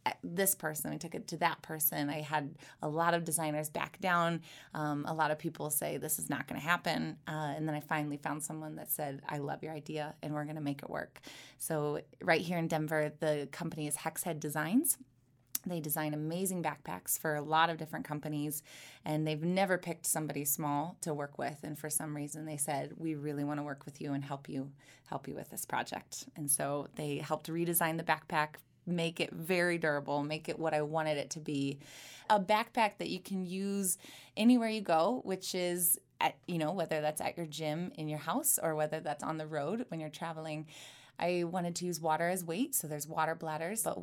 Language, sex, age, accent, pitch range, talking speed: English, female, 20-39, American, 150-170 Hz, 220 wpm